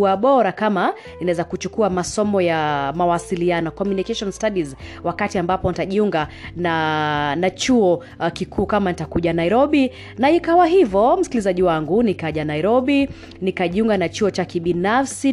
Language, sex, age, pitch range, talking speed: Swahili, female, 30-49, 170-235 Hz, 125 wpm